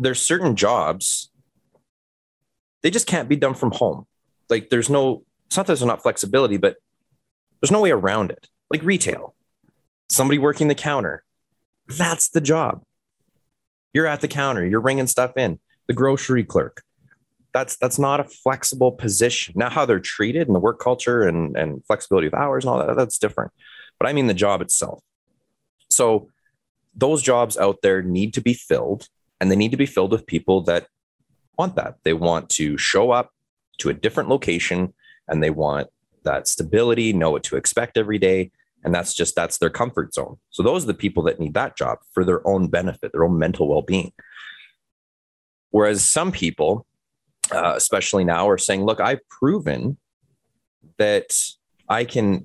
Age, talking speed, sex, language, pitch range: 20-39, 175 wpm, male, English, 90-145 Hz